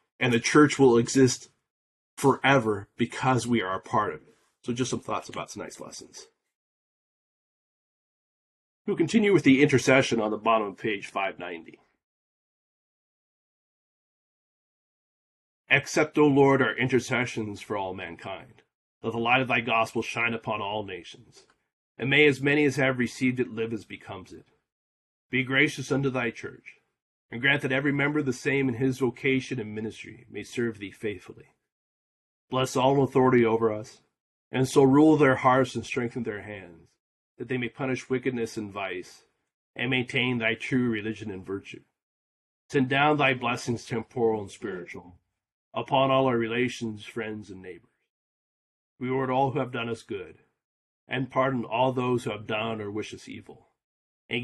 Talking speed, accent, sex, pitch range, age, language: 160 wpm, American, male, 110-130 Hz, 30-49, English